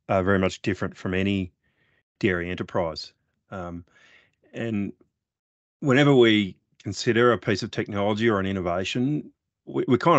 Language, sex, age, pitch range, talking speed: English, male, 30-49, 90-115 Hz, 135 wpm